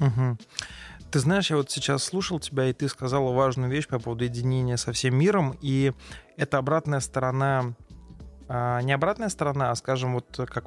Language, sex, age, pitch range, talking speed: Russian, male, 20-39, 130-150 Hz, 175 wpm